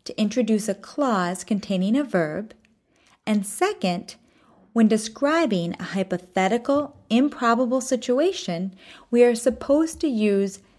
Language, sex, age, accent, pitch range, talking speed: English, female, 30-49, American, 190-245 Hz, 110 wpm